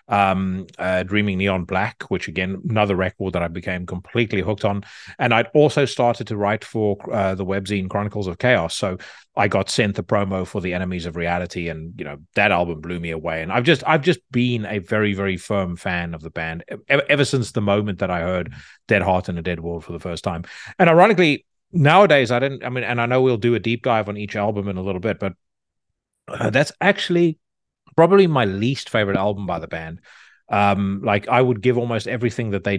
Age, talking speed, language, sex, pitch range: 30-49, 225 wpm, English, male, 95-120 Hz